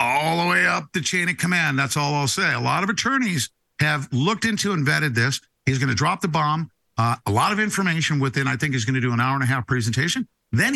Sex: male